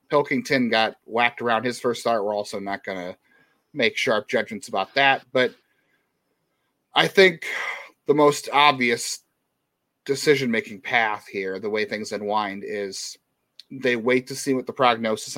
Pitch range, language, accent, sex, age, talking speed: 115-155 Hz, English, American, male, 30-49, 150 wpm